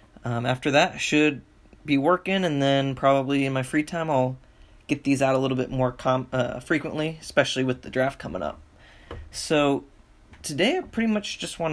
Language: English